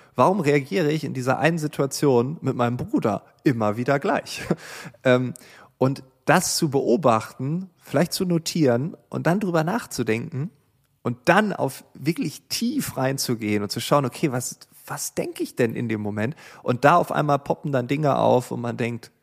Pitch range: 115-145 Hz